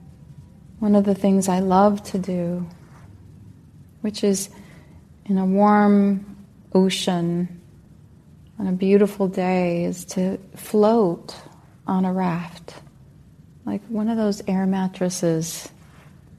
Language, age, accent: English, 30-49, American